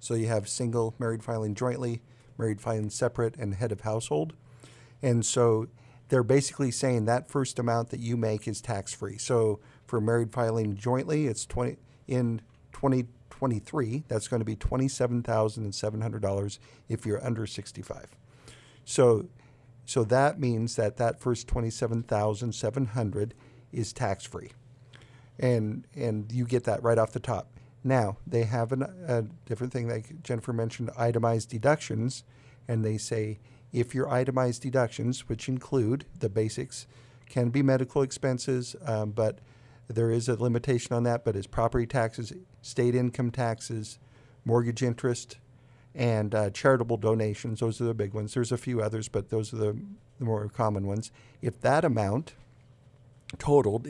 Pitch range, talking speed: 115-125 Hz, 150 wpm